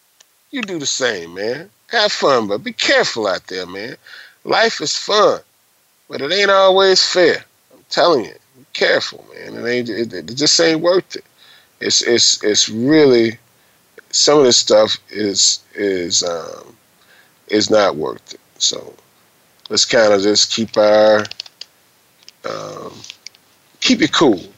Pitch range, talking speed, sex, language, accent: 105-155 Hz, 150 wpm, male, English, American